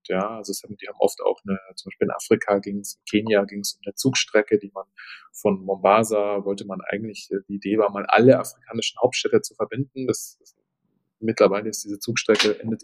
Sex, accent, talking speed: male, German, 200 wpm